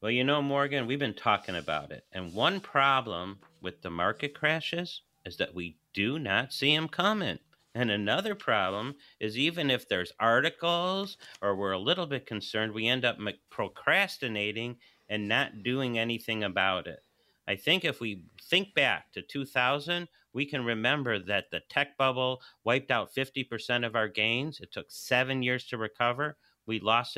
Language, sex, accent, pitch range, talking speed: English, male, American, 110-145 Hz, 170 wpm